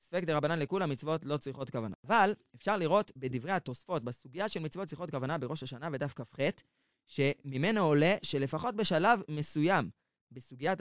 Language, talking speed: Hebrew, 155 wpm